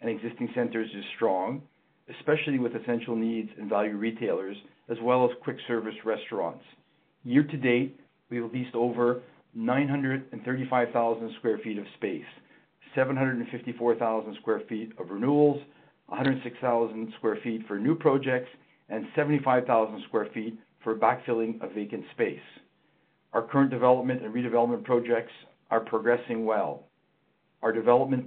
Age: 50-69